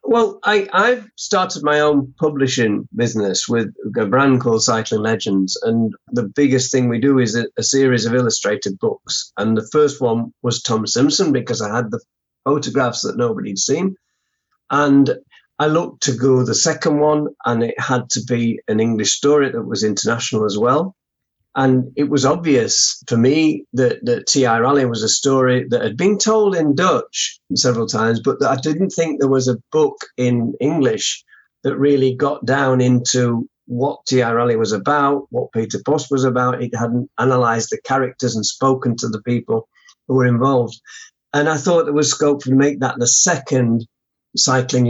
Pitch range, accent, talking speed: 115-145 Hz, British, 180 wpm